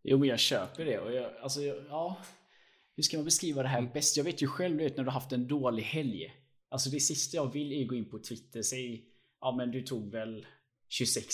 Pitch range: 110-135 Hz